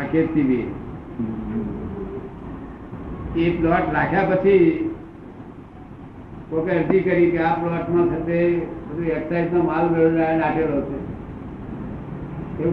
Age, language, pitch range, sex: 60-79, Gujarati, 160-180 Hz, male